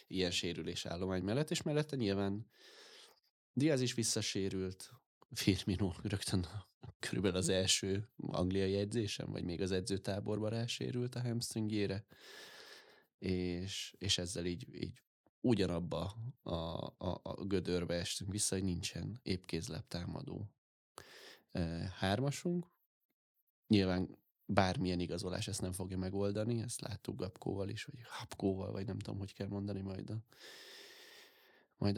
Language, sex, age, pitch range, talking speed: Hungarian, male, 20-39, 95-115 Hz, 120 wpm